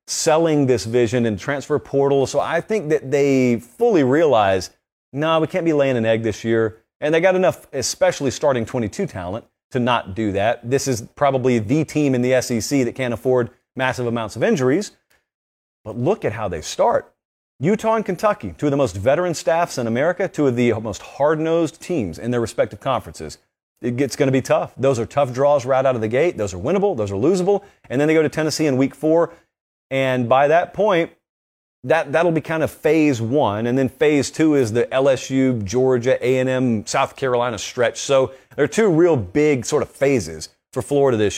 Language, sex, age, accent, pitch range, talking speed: English, male, 40-59, American, 115-155 Hz, 205 wpm